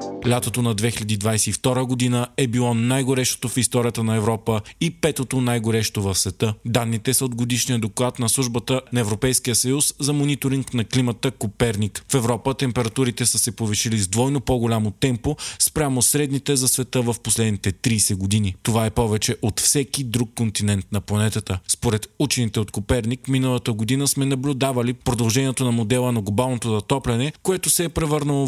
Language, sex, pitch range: Bulgarian, male, 110-135 Hz